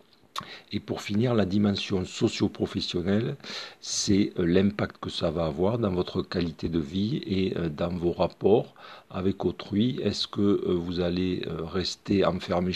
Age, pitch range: 50-69, 90-105 Hz